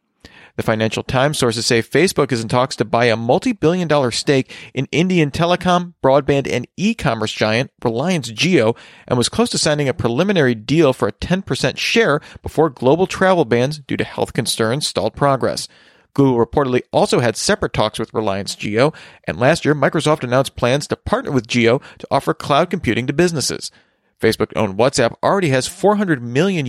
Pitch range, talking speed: 120-160 Hz, 175 wpm